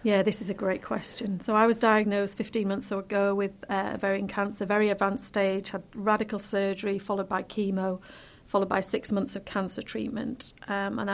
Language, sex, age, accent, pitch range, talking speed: English, female, 40-59, British, 200-225 Hz, 190 wpm